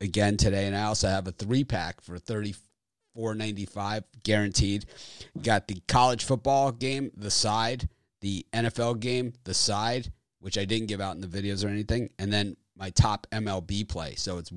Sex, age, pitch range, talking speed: male, 30-49, 90-115 Hz, 185 wpm